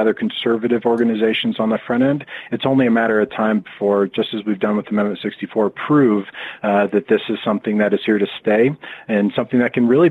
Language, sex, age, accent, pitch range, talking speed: English, male, 40-59, American, 100-120 Hz, 215 wpm